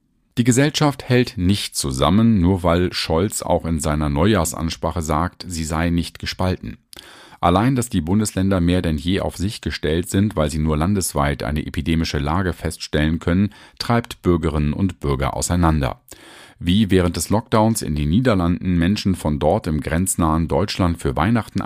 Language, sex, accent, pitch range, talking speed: German, male, German, 80-105 Hz, 160 wpm